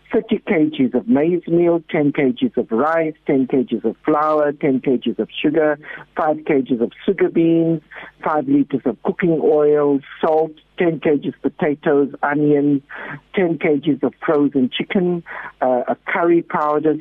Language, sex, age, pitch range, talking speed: English, male, 60-79, 130-165 Hz, 150 wpm